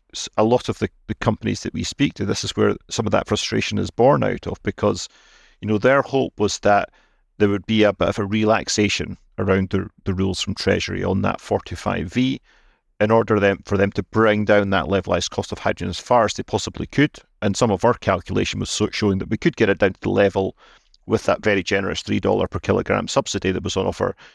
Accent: British